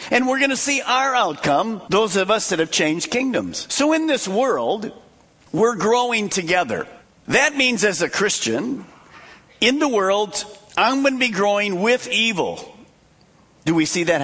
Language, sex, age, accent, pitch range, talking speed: English, male, 50-69, American, 185-250 Hz, 170 wpm